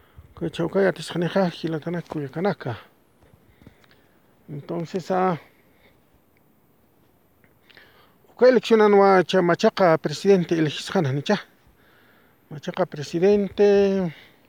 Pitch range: 165-200 Hz